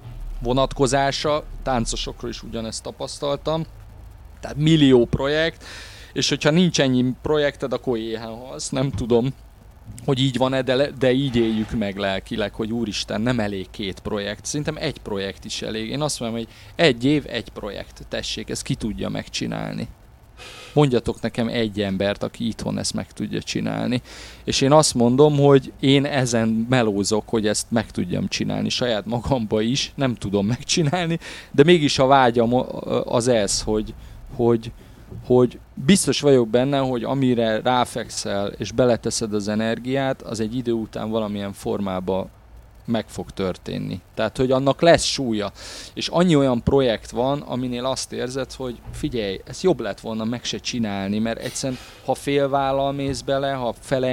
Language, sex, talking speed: Hungarian, male, 150 wpm